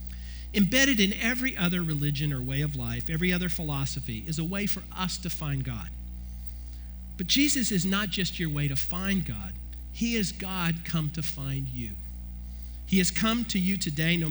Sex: male